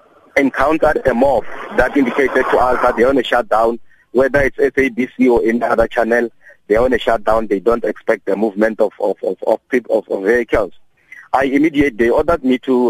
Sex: male